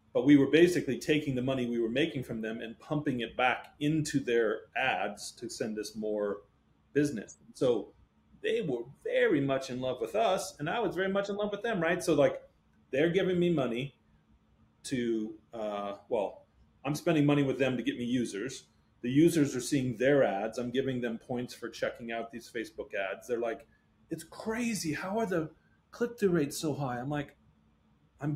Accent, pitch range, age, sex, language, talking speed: American, 120-160 Hz, 30-49, male, English, 195 wpm